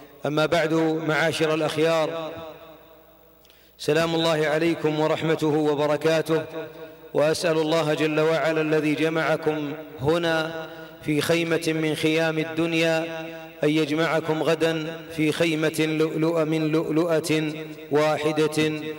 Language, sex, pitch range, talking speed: Arabic, male, 155-165 Hz, 95 wpm